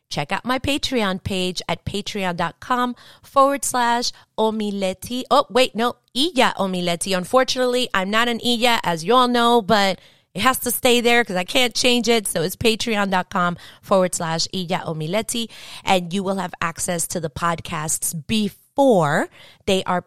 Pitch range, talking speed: 170-230 Hz, 160 wpm